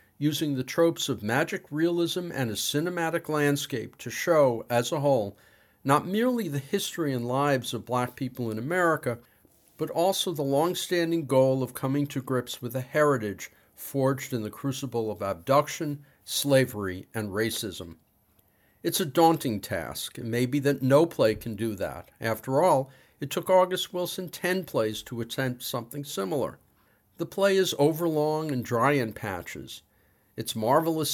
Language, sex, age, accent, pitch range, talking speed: English, male, 50-69, American, 115-155 Hz, 155 wpm